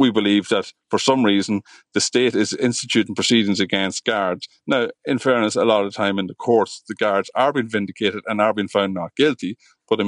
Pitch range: 100-120 Hz